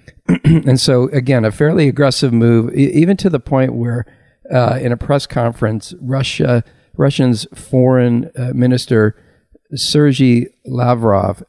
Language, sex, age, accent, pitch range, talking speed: English, male, 50-69, American, 105-130 Hz, 125 wpm